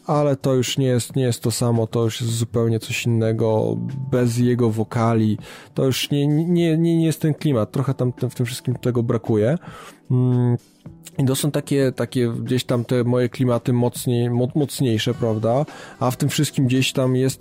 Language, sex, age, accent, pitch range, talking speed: Polish, male, 20-39, native, 115-130 Hz, 185 wpm